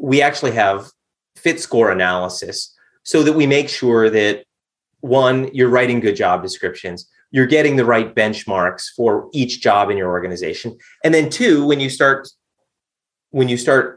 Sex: male